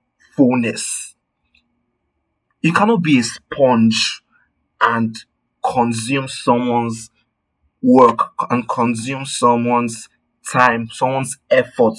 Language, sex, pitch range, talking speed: English, male, 115-145 Hz, 80 wpm